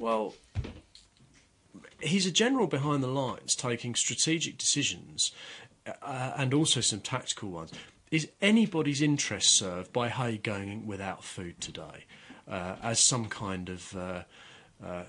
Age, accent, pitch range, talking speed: 40-59, British, 95-140 Hz, 130 wpm